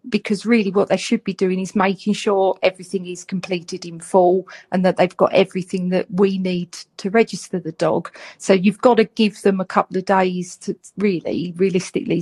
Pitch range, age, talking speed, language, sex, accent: 185-210 Hz, 40-59, 195 wpm, English, female, British